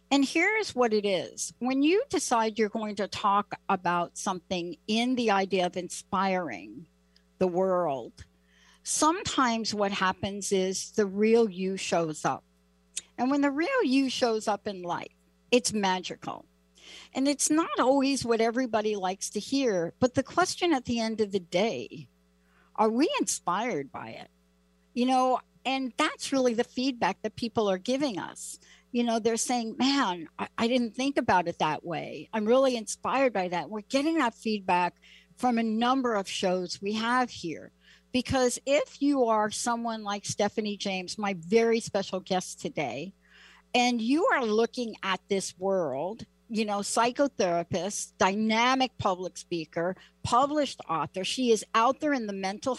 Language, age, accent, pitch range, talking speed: English, 60-79, American, 185-250 Hz, 160 wpm